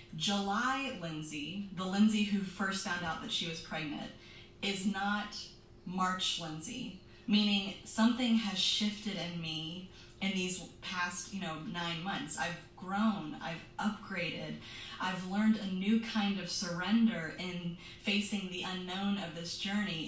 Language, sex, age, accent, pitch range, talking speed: English, female, 20-39, American, 175-220 Hz, 140 wpm